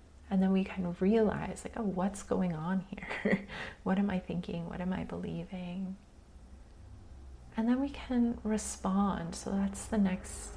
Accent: American